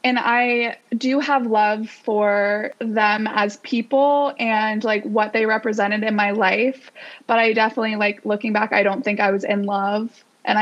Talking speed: 175 wpm